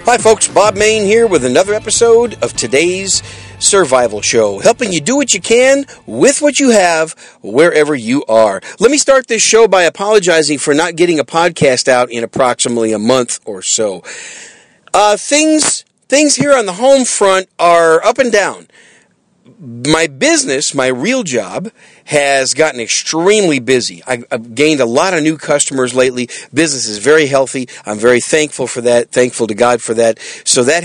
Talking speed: 175 wpm